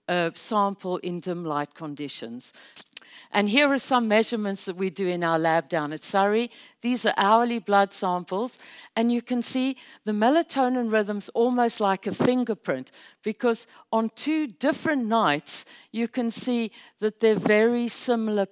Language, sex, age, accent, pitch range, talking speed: English, female, 60-79, British, 180-235 Hz, 155 wpm